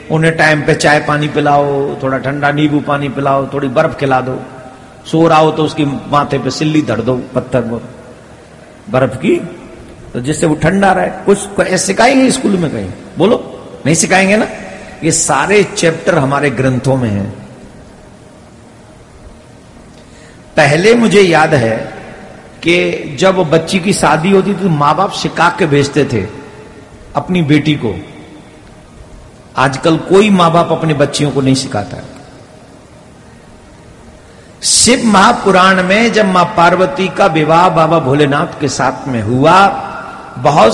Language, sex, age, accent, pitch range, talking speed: Gujarati, male, 50-69, native, 140-190 Hz, 135 wpm